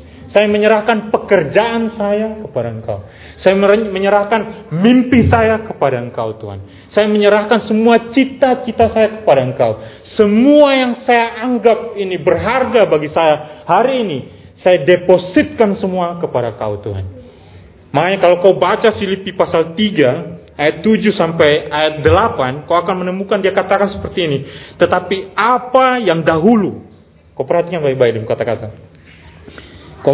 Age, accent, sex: 30-49, native, male